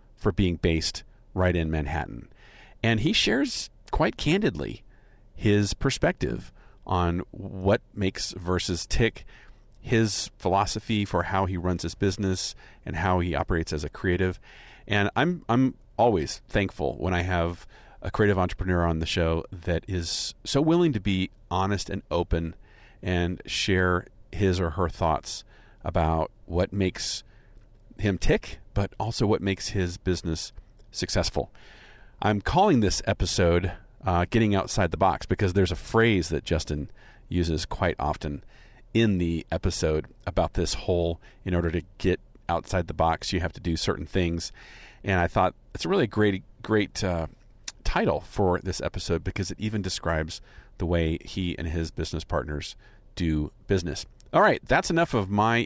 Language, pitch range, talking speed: English, 85-105 Hz, 155 wpm